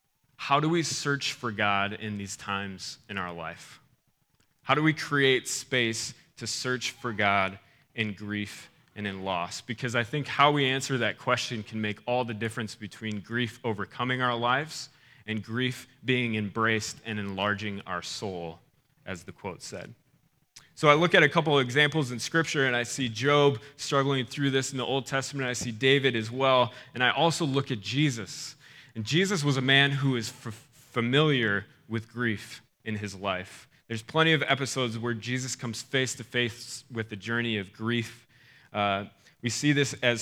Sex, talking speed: male, 180 wpm